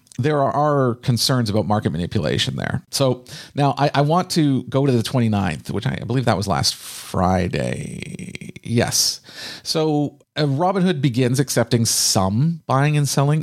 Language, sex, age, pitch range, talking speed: English, male, 40-59, 110-135 Hz, 150 wpm